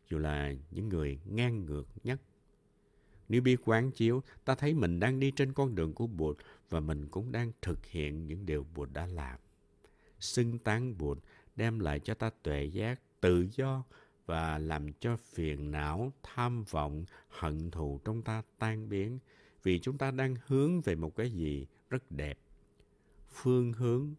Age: 60-79